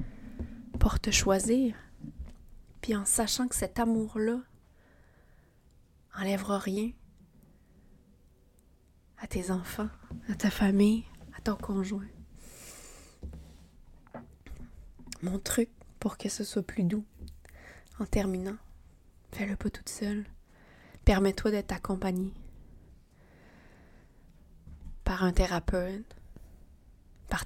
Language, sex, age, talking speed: French, female, 20-39, 90 wpm